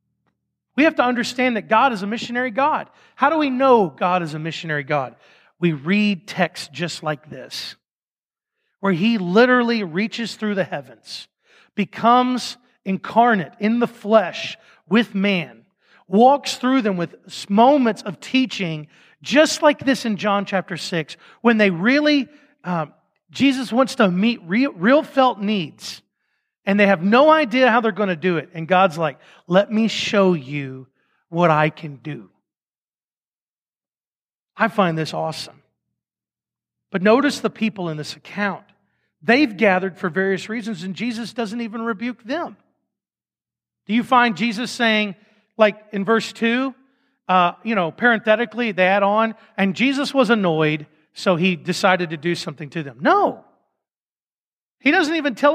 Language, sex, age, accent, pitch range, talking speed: English, male, 40-59, American, 180-245 Hz, 150 wpm